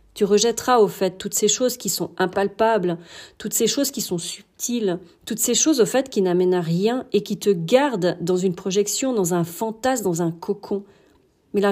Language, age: French, 40-59